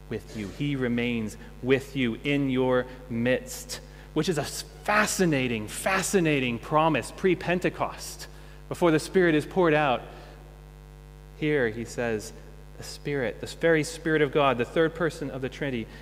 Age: 30-49